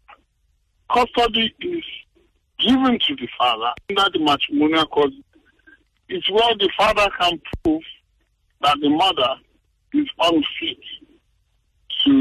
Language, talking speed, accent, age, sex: English, 110 wpm, American, 50-69, female